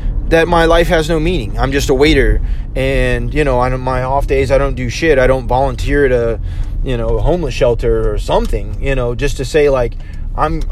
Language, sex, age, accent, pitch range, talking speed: English, male, 20-39, American, 110-145 Hz, 225 wpm